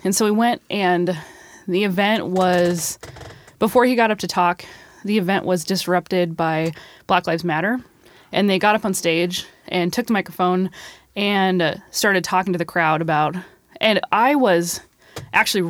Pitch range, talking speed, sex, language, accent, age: 165-210 Hz, 165 wpm, female, English, American, 20-39